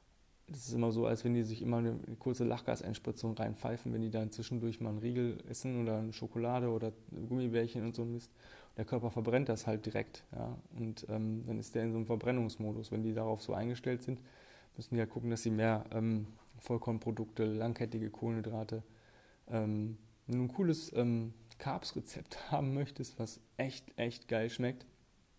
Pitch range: 110-130 Hz